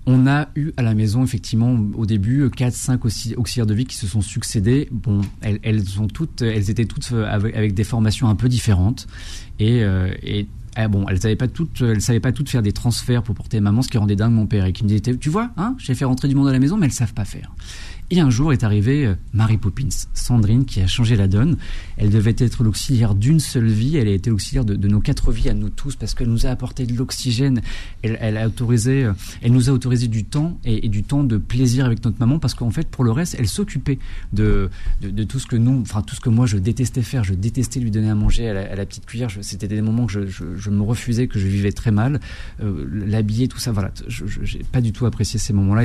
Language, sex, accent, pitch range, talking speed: French, male, French, 105-125 Hz, 260 wpm